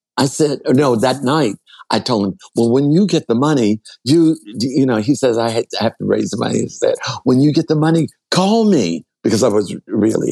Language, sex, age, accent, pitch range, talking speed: English, male, 60-79, American, 90-135 Hz, 225 wpm